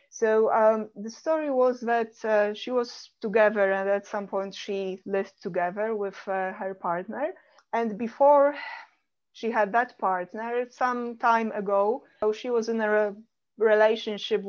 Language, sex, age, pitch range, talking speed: English, female, 30-49, 195-230 Hz, 145 wpm